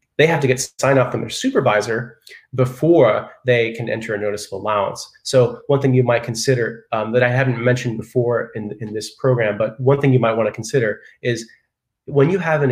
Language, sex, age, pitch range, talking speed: English, male, 30-49, 110-130 Hz, 215 wpm